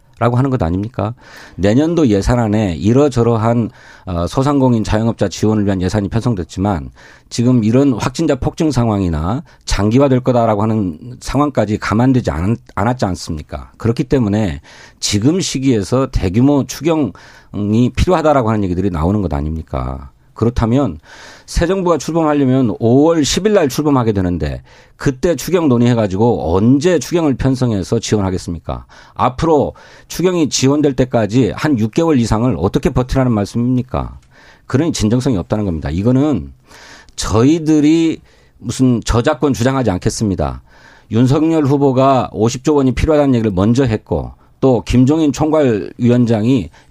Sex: male